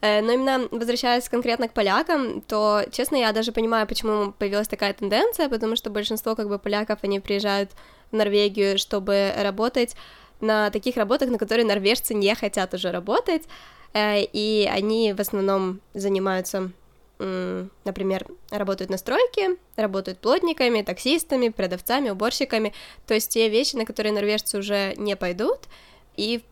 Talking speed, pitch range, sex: 135 wpm, 195-235 Hz, female